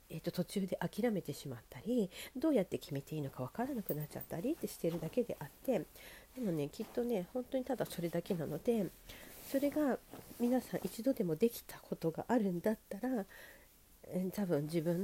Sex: female